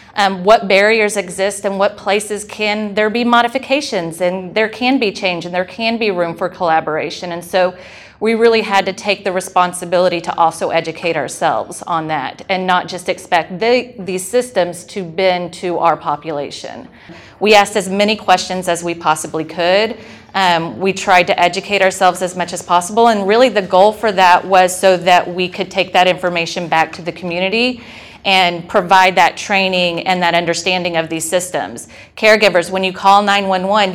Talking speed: 180 wpm